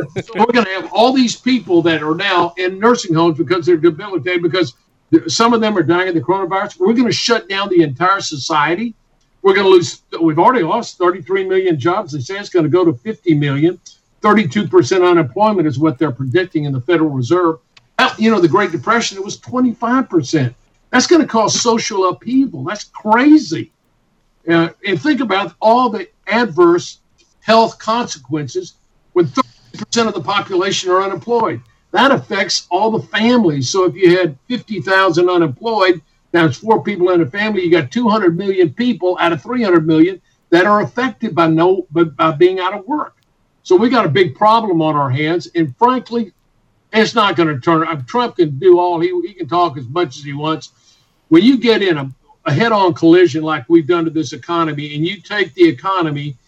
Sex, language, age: male, English, 60-79